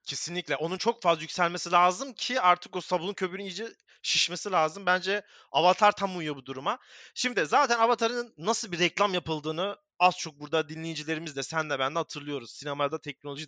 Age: 30-49